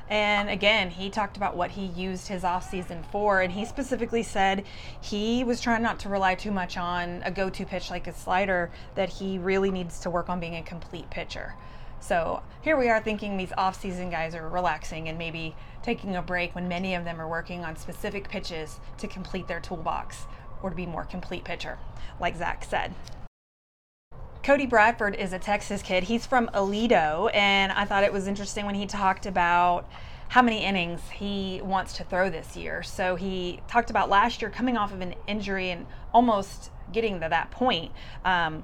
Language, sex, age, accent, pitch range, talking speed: English, female, 20-39, American, 180-210 Hz, 195 wpm